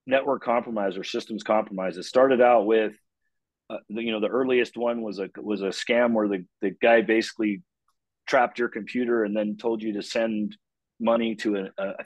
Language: English